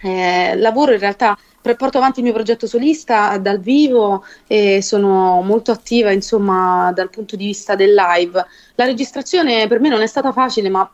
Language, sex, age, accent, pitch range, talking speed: English, female, 20-39, Italian, 200-245 Hz, 175 wpm